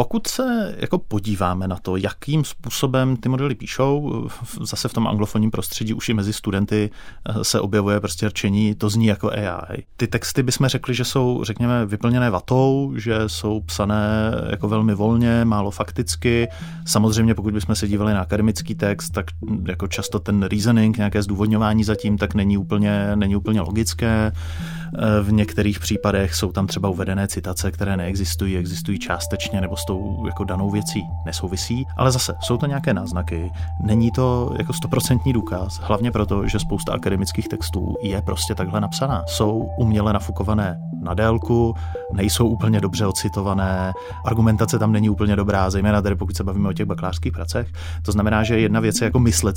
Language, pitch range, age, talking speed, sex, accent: Czech, 95-110 Hz, 30-49, 165 wpm, male, native